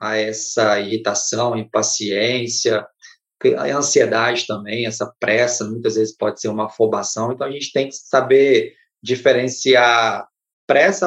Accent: Brazilian